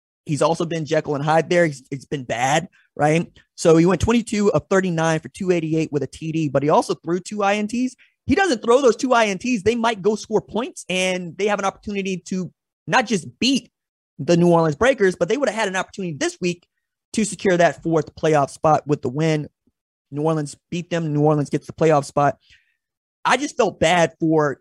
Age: 20-39